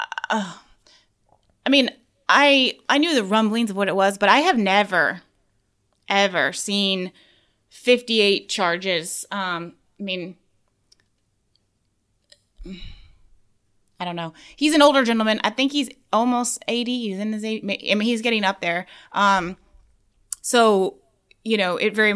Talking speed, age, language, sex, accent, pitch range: 135 wpm, 20-39, English, female, American, 170-205 Hz